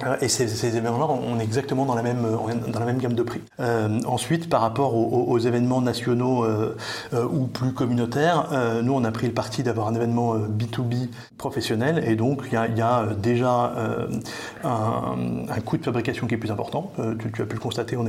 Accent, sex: French, male